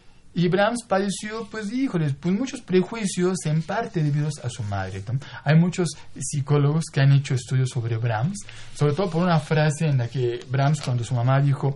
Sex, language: male, Spanish